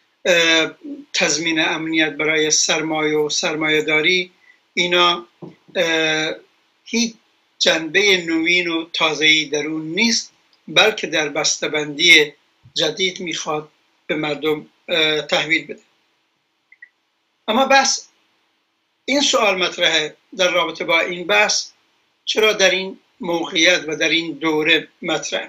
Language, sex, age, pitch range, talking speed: Persian, male, 60-79, 160-195 Hz, 100 wpm